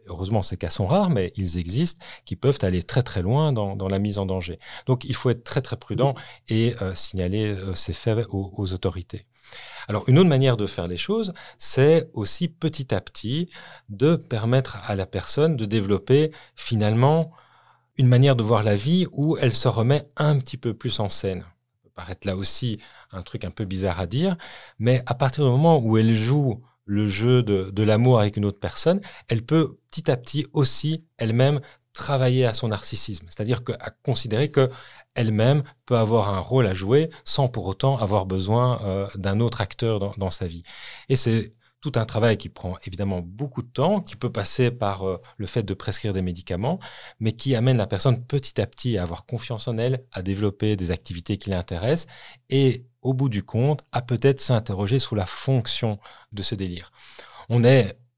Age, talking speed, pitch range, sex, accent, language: 40-59, 200 wpm, 100-135 Hz, male, French, French